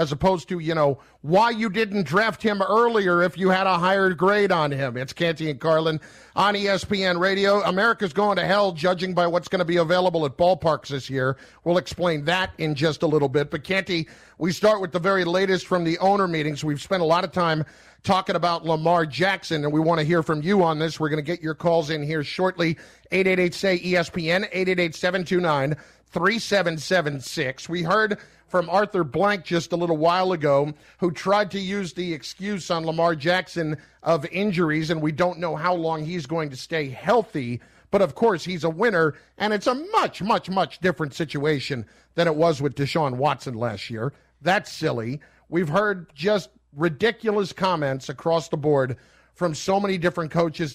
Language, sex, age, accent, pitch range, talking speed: English, male, 50-69, American, 155-190 Hz, 195 wpm